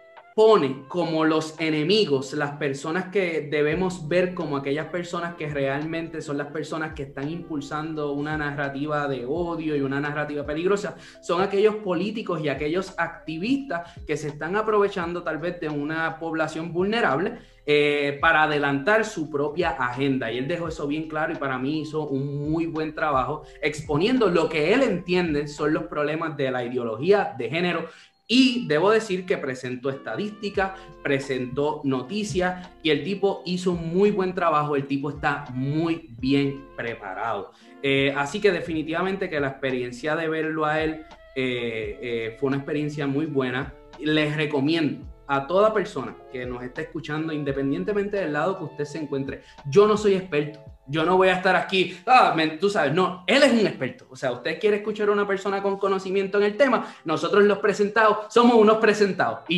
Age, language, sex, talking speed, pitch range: 20-39, English, male, 175 wpm, 145-185 Hz